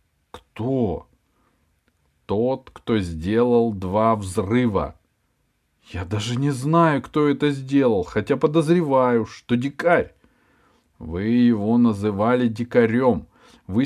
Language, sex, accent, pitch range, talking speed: Russian, male, native, 95-135 Hz, 95 wpm